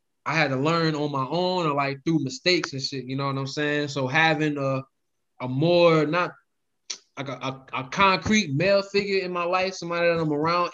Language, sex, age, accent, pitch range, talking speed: English, male, 20-39, American, 135-165 Hz, 210 wpm